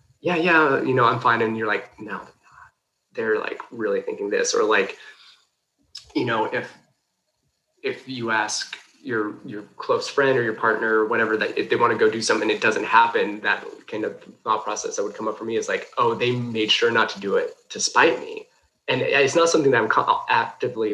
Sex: male